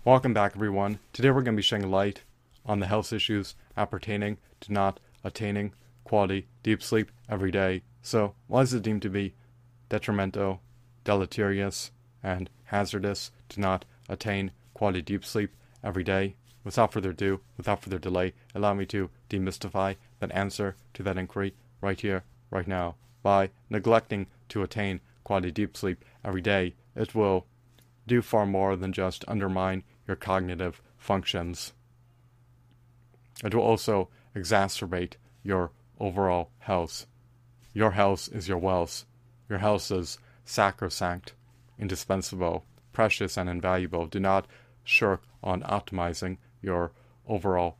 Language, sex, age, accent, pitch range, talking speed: English, male, 30-49, American, 95-120 Hz, 135 wpm